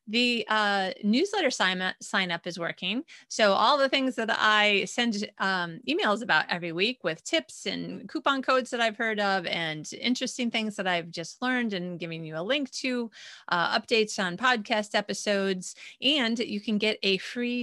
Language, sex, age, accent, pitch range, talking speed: English, female, 30-49, American, 185-245 Hz, 185 wpm